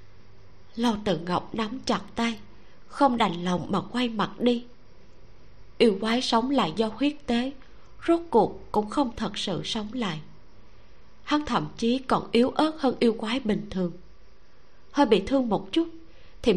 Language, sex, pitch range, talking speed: Vietnamese, female, 175-250 Hz, 165 wpm